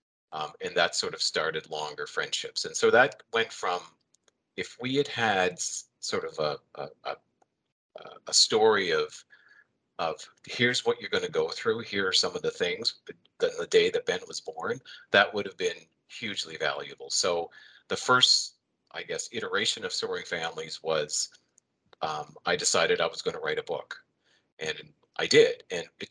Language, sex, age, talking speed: English, male, 40-59, 175 wpm